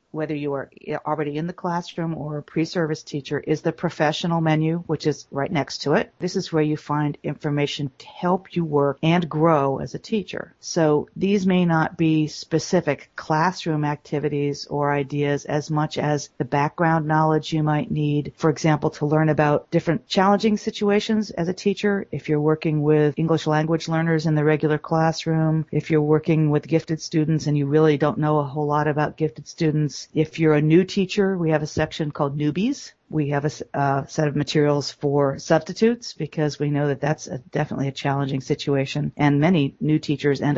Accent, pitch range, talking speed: American, 145-165 Hz, 190 wpm